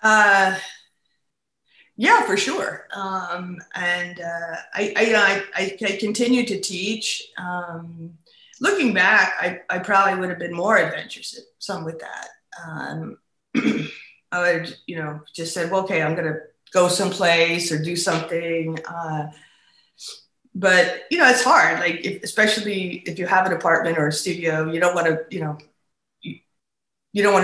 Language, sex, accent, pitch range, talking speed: English, female, American, 170-210 Hz, 155 wpm